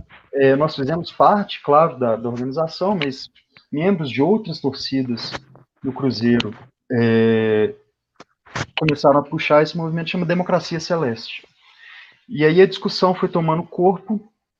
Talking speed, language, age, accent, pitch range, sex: 125 wpm, Portuguese, 30-49, Brazilian, 125-165 Hz, male